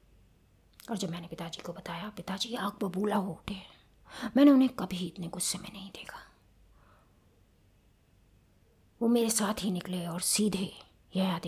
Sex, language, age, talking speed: female, Hindi, 20-39, 140 wpm